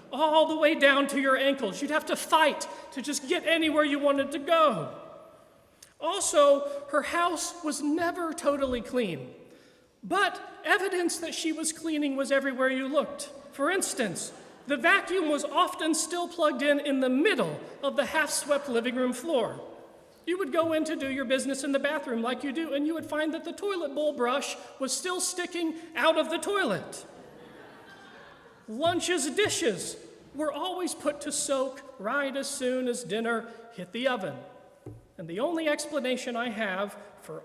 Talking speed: 170 wpm